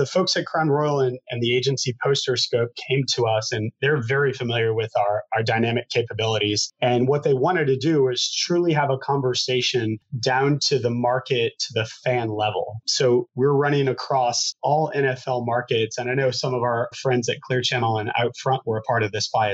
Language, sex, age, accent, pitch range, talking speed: English, male, 30-49, American, 120-140 Hz, 205 wpm